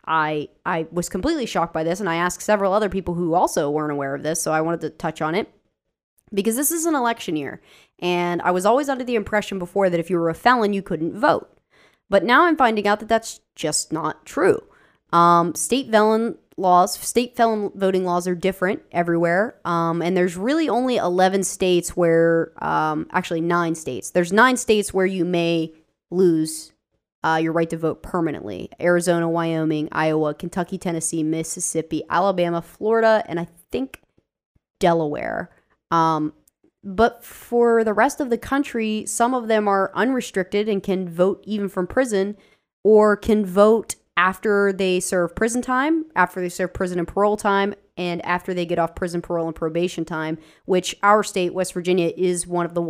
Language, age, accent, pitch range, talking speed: English, 20-39, American, 170-210 Hz, 180 wpm